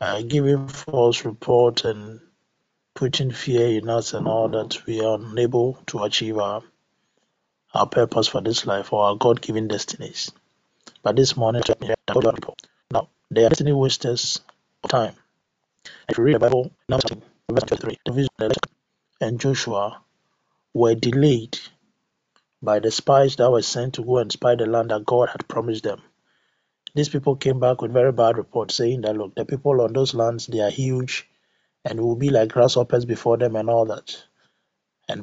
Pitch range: 115-135 Hz